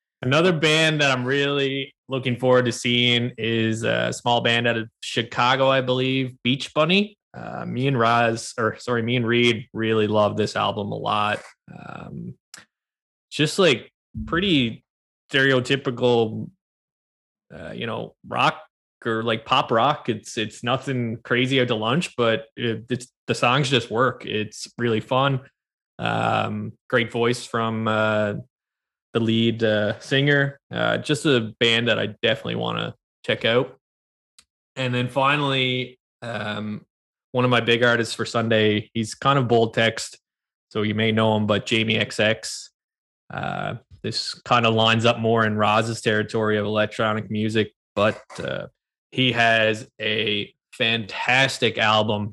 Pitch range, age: 110-130 Hz, 20-39